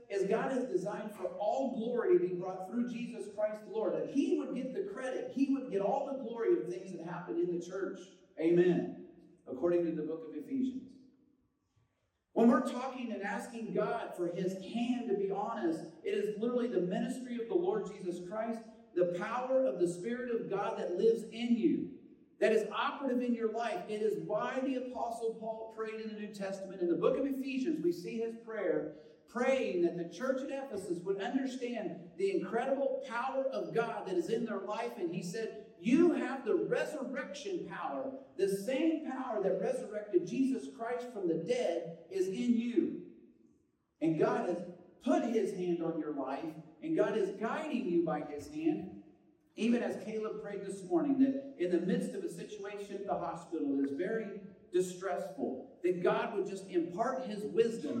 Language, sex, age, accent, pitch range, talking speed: English, male, 40-59, American, 195-265 Hz, 185 wpm